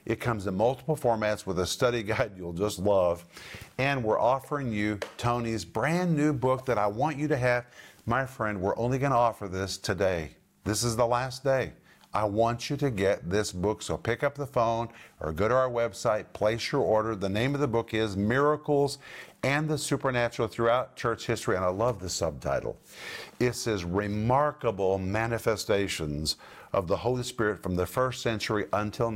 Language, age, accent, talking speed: English, 50-69, American, 185 wpm